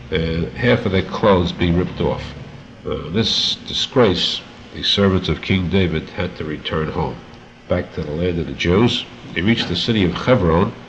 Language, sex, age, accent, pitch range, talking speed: English, male, 60-79, American, 85-100 Hz, 180 wpm